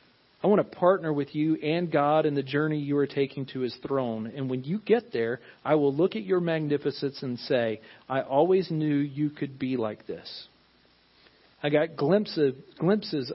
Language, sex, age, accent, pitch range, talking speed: English, male, 40-59, American, 110-145 Hz, 195 wpm